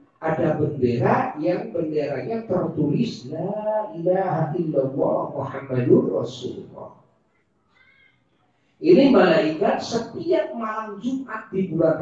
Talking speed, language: 85 wpm, Indonesian